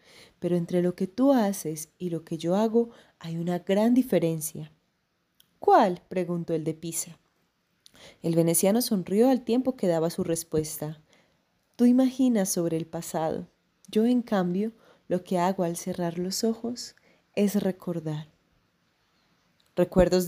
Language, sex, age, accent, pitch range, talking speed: Spanish, female, 30-49, Colombian, 170-225 Hz, 140 wpm